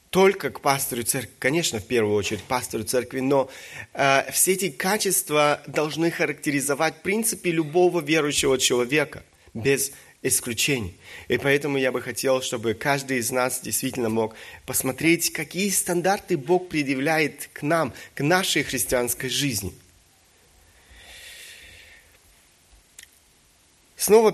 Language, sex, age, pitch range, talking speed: Russian, male, 20-39, 130-170 Hz, 115 wpm